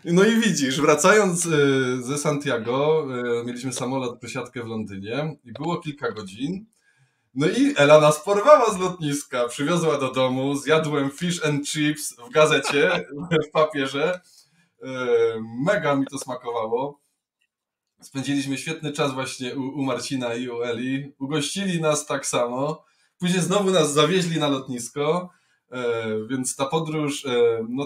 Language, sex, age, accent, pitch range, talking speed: Polish, male, 20-39, native, 125-160 Hz, 130 wpm